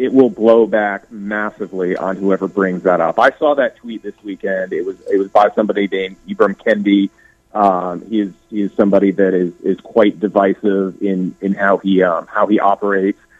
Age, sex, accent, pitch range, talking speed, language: 30-49, male, American, 100-110 Hz, 195 wpm, English